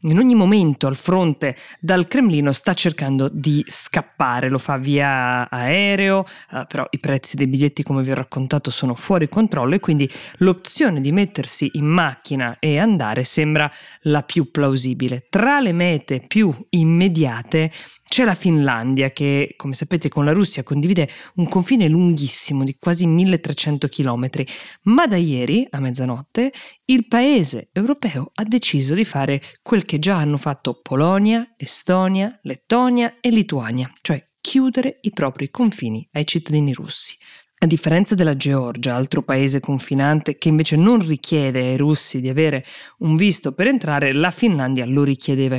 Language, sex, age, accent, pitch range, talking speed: Italian, female, 20-39, native, 140-180 Hz, 150 wpm